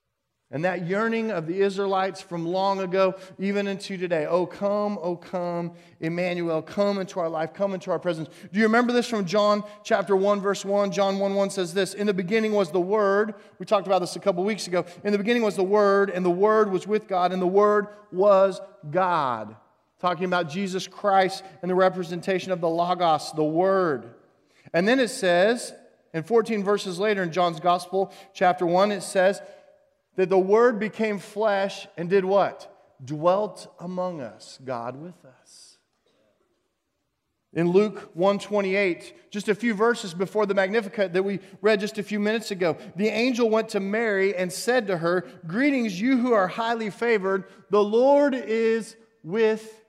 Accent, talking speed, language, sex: American, 180 wpm, English, male